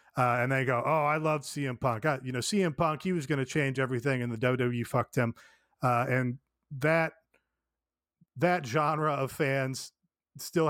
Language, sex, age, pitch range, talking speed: English, male, 30-49, 130-150 Hz, 185 wpm